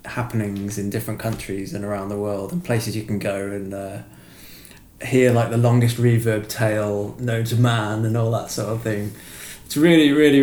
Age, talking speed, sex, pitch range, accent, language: 20-39, 190 wpm, male, 105-125 Hz, British, English